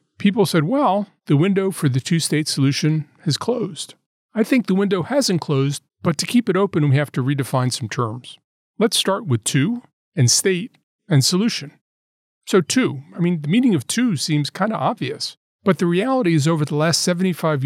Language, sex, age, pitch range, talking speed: English, male, 40-59, 135-185 Hz, 190 wpm